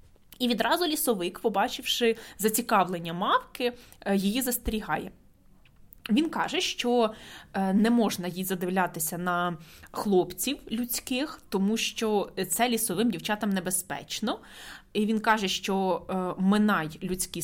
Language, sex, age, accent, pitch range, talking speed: Ukrainian, female, 20-39, native, 175-230 Hz, 105 wpm